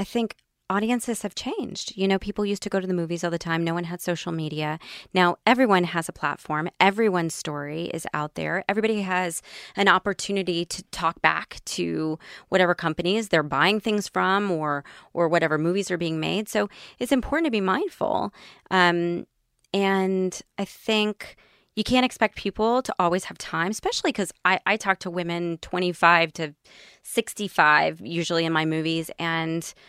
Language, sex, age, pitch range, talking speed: English, female, 20-39, 170-215 Hz, 175 wpm